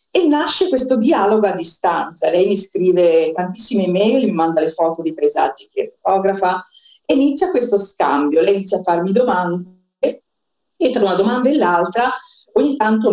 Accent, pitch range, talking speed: native, 185-265 Hz, 160 wpm